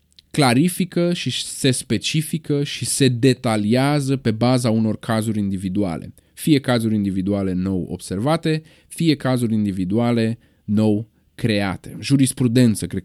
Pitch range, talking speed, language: 95-130 Hz, 110 wpm, Romanian